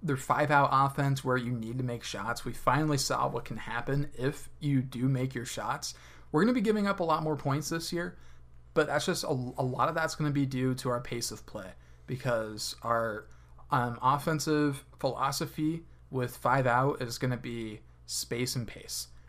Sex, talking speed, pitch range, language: male, 200 wpm, 115-145 Hz, English